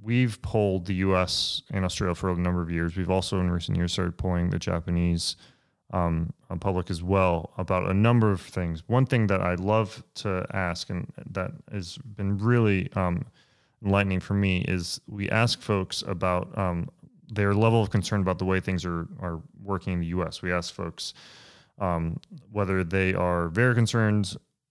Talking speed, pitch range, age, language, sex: 180 wpm, 90-105 Hz, 30-49, English, male